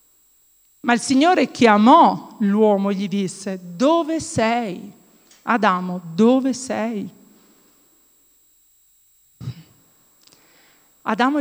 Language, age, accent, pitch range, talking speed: Italian, 50-69, native, 195-255 Hz, 75 wpm